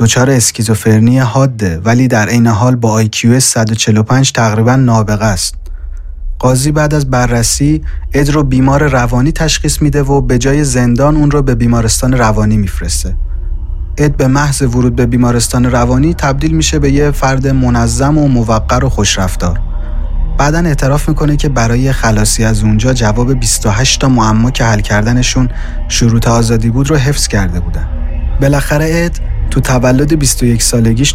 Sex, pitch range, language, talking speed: male, 105-135 Hz, Persian, 145 wpm